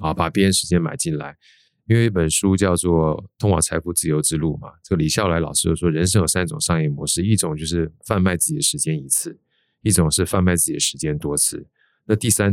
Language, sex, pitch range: Chinese, male, 85-110 Hz